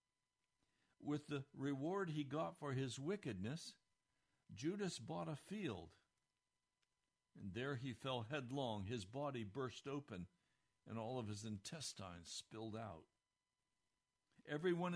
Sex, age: male, 60-79